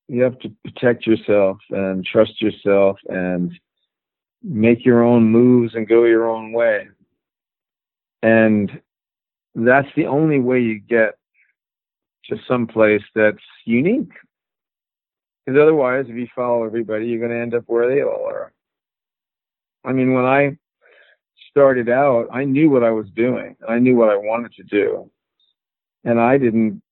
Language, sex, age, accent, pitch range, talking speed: English, male, 50-69, American, 110-125 Hz, 150 wpm